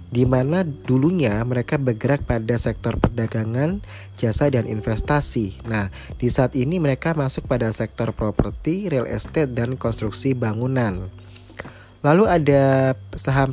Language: Indonesian